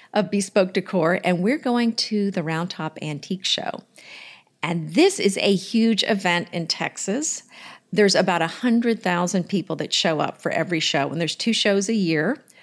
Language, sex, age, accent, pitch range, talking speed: English, female, 50-69, American, 175-230 Hz, 175 wpm